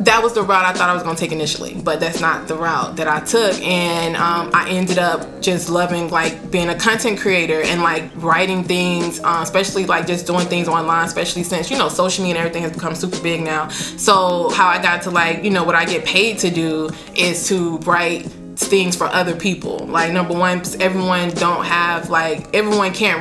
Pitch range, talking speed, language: 165-185 Hz, 220 wpm, English